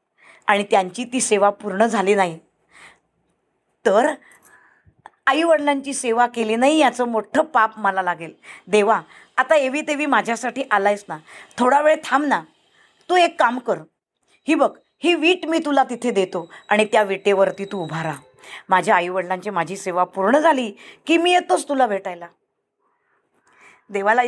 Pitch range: 195-275 Hz